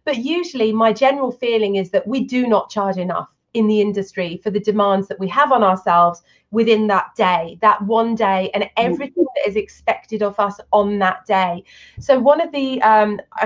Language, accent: English, British